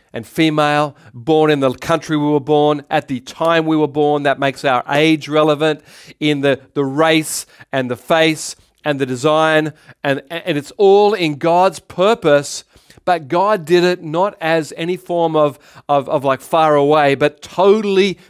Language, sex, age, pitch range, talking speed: English, male, 40-59, 155-195 Hz, 175 wpm